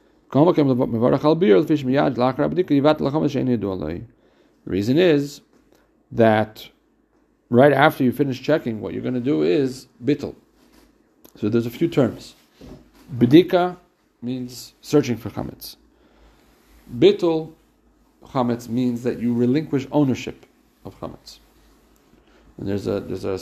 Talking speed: 95 wpm